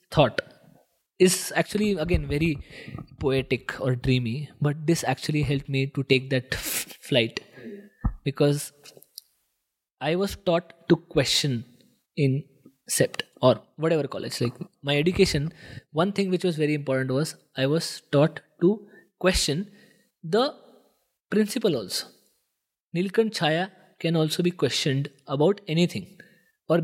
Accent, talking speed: Indian, 125 wpm